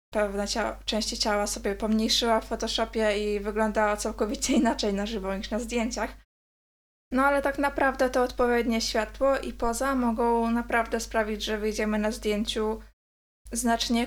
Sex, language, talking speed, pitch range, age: female, Polish, 145 wpm, 215-235 Hz, 20-39